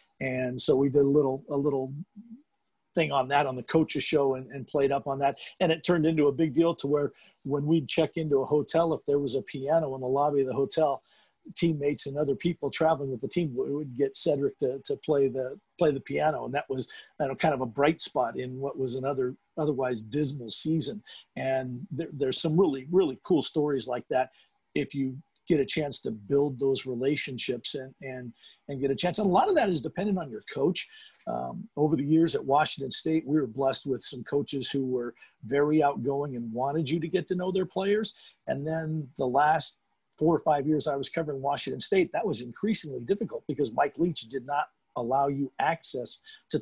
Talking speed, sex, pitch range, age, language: 215 wpm, male, 135-165 Hz, 50-69, English